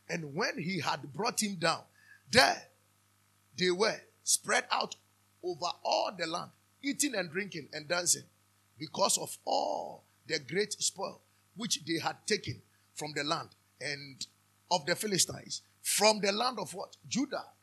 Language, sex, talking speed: English, male, 150 wpm